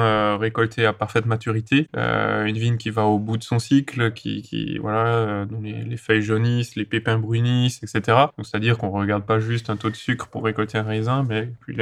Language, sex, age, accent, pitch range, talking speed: French, male, 20-39, French, 110-120 Hz, 225 wpm